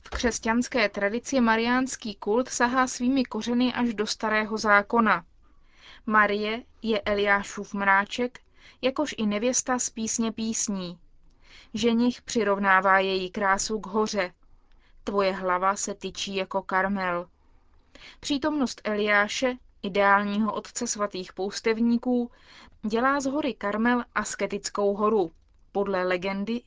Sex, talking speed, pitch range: female, 110 wpm, 200-240 Hz